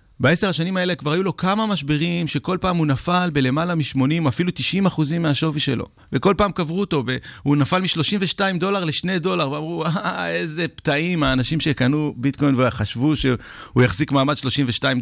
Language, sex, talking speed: Hebrew, male, 170 wpm